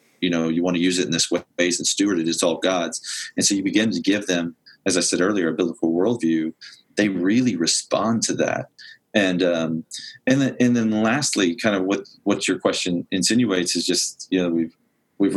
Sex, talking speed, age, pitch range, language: male, 215 wpm, 30-49, 85-95 Hz, English